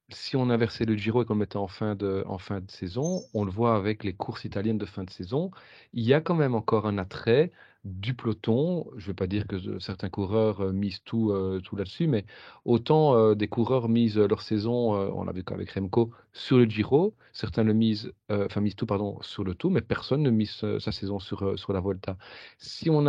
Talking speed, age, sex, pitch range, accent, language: 225 wpm, 40-59, male, 100-120 Hz, French, French